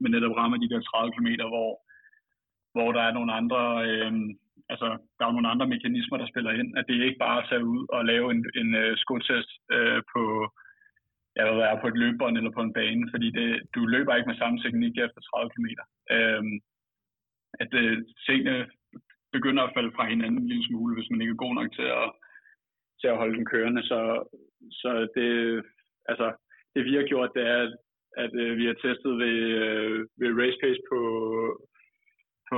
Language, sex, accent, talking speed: Danish, male, native, 190 wpm